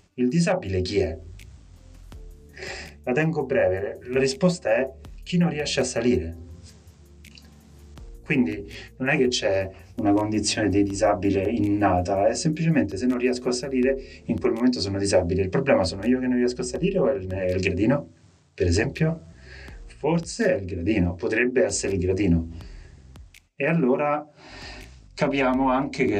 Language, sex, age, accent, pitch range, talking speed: Italian, male, 30-49, native, 90-130 Hz, 150 wpm